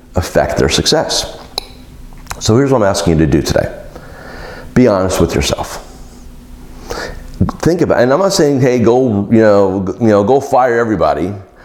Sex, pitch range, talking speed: male, 100-145 Hz, 160 wpm